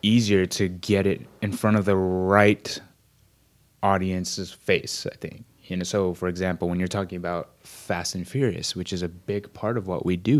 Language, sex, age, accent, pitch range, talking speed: English, male, 20-39, American, 90-115 Hz, 195 wpm